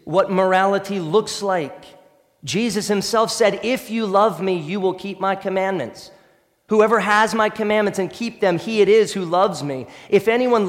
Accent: American